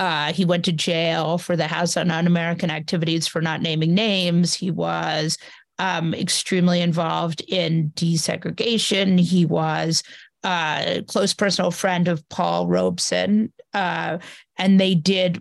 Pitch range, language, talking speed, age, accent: 170-200 Hz, English, 135 wpm, 40-59, American